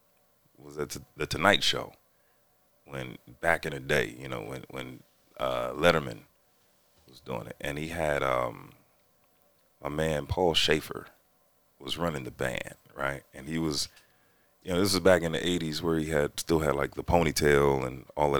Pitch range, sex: 70-85 Hz, male